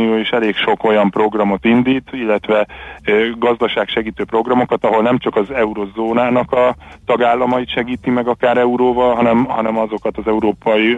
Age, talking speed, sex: 30-49, 130 wpm, male